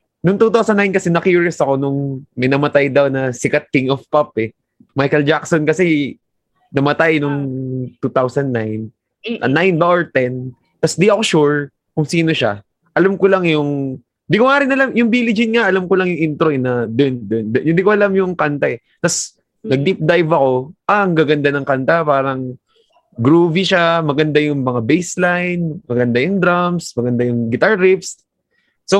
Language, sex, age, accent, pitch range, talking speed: Filipino, male, 20-39, native, 135-190 Hz, 175 wpm